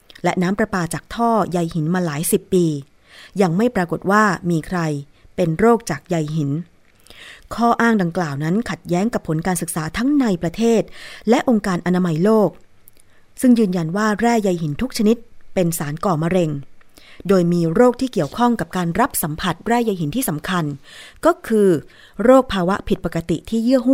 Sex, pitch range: female, 160-220 Hz